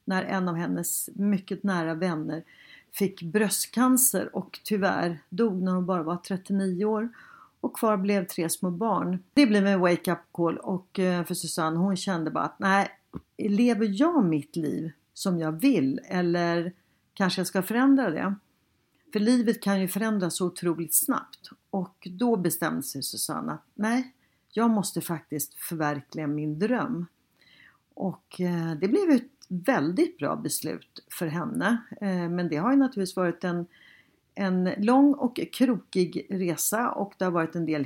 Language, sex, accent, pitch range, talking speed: Swedish, female, native, 175-220 Hz, 155 wpm